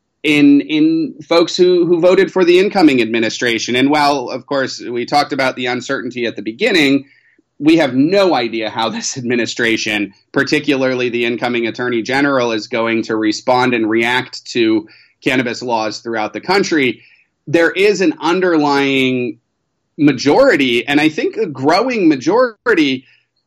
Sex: male